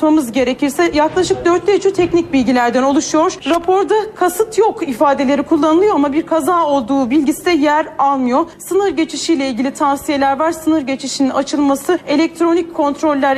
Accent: native